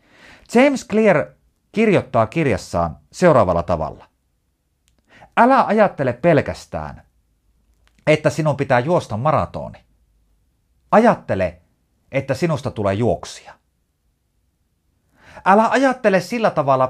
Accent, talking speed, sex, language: native, 80 wpm, male, Finnish